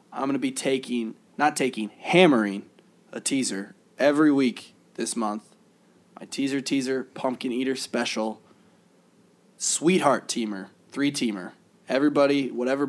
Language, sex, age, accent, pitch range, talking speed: English, male, 20-39, American, 115-140 Hz, 115 wpm